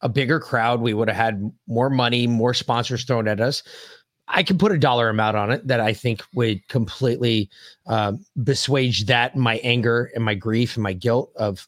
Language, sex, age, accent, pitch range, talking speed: English, male, 30-49, American, 115-150 Hz, 200 wpm